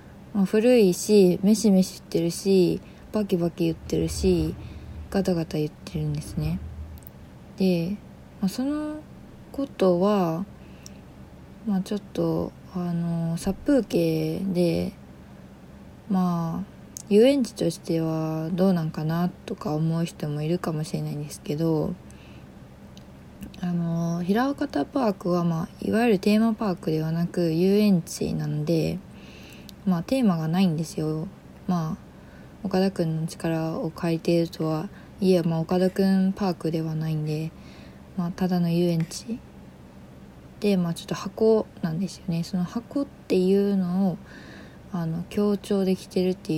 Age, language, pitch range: 20-39, Japanese, 155-190 Hz